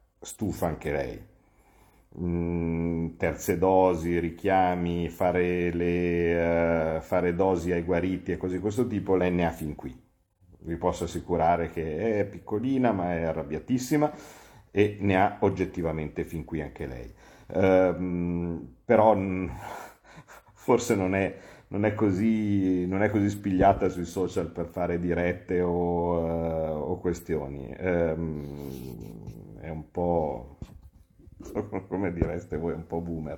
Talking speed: 130 wpm